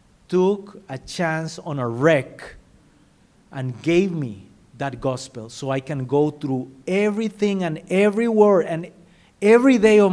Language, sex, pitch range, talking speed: English, male, 135-180 Hz, 135 wpm